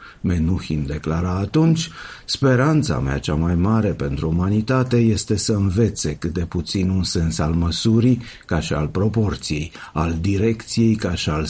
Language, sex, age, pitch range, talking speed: Romanian, male, 50-69, 80-105 Hz, 150 wpm